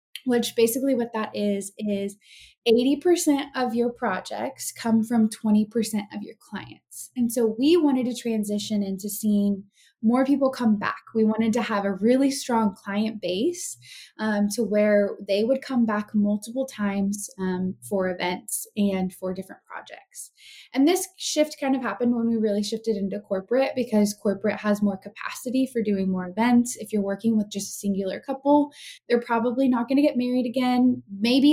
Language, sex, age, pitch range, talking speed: English, female, 20-39, 205-260 Hz, 175 wpm